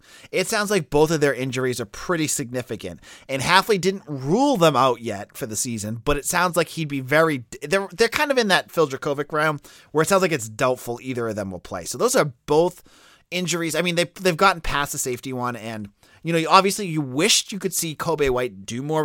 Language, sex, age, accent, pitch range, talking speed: English, male, 30-49, American, 120-170 Hz, 225 wpm